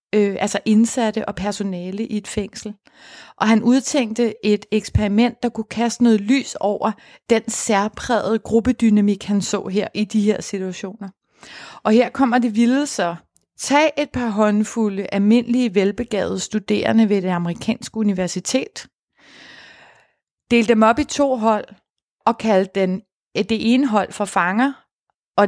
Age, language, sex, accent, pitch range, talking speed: 30-49, Danish, female, native, 200-235 Hz, 140 wpm